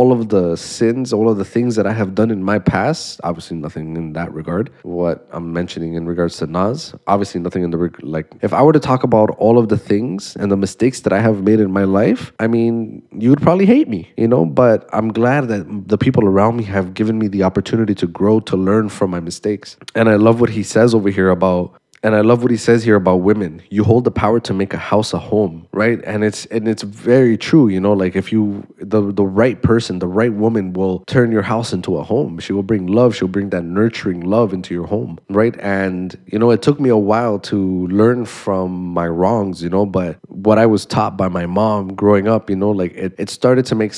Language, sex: English, male